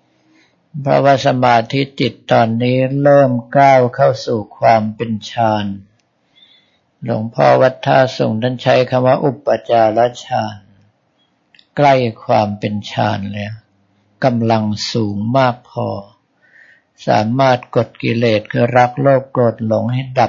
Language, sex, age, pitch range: Thai, male, 60-79, 110-130 Hz